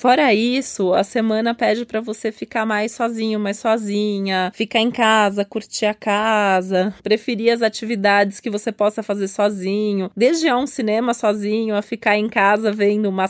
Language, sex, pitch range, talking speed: Portuguese, female, 205-235 Hz, 165 wpm